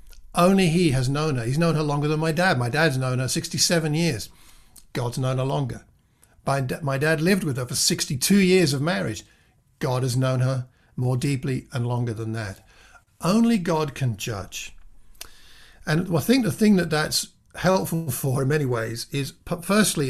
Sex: male